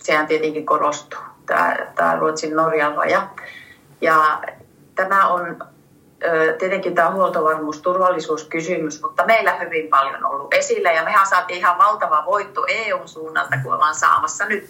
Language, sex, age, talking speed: Finnish, female, 30-49, 120 wpm